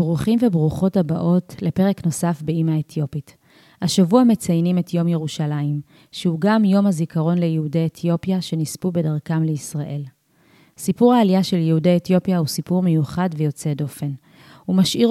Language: Hebrew